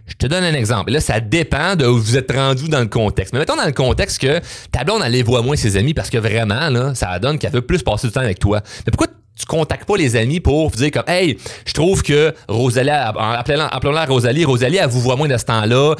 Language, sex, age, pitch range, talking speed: French, male, 30-49, 110-140 Hz, 270 wpm